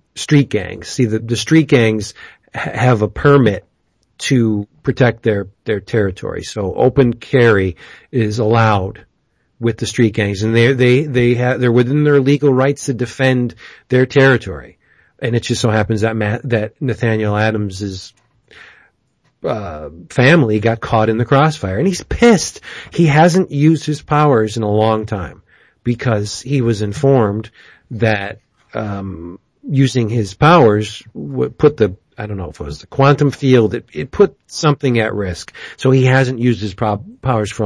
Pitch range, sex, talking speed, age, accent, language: 105-130 Hz, male, 160 wpm, 40-59, American, English